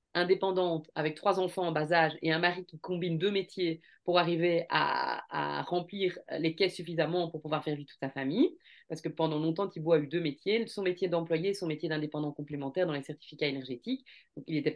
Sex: female